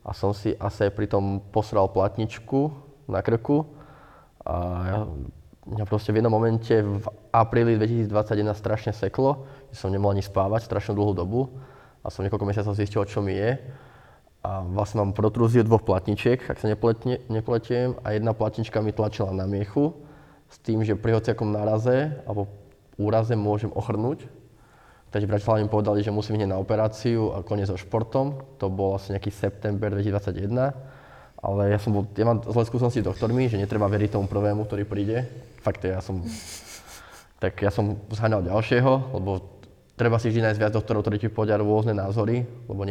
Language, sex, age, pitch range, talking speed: Slovak, male, 20-39, 100-115 Hz, 170 wpm